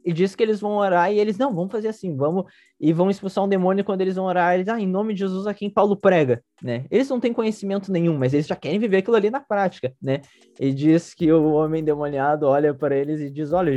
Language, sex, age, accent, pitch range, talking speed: Portuguese, male, 20-39, Brazilian, 125-185 Hz, 265 wpm